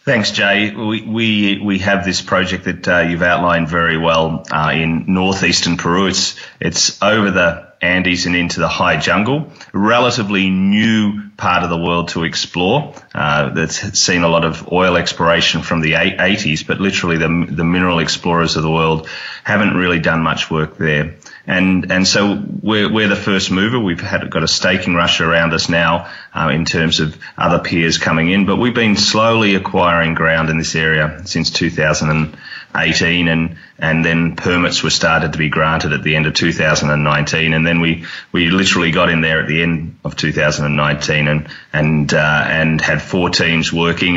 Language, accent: English, Australian